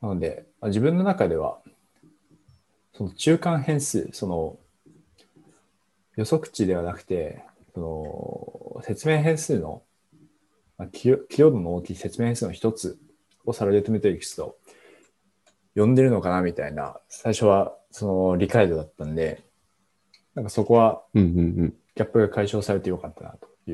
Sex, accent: male, native